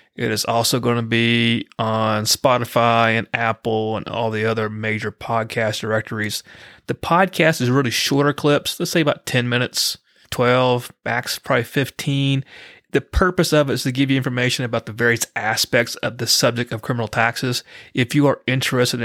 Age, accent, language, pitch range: 30-49, American, English, 115-130 Hz